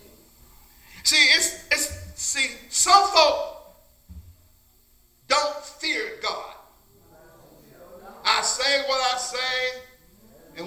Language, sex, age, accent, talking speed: English, male, 50-69, American, 85 wpm